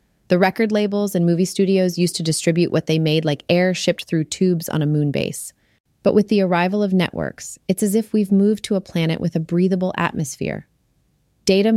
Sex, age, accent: female, 30-49, American